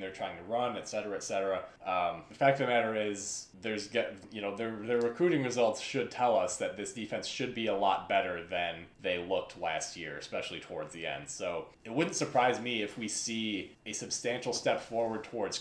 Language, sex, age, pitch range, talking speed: English, male, 20-39, 95-120 Hz, 200 wpm